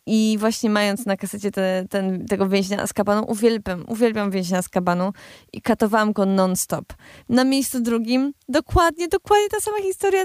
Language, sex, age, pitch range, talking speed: Polish, female, 20-39, 185-235 Hz, 165 wpm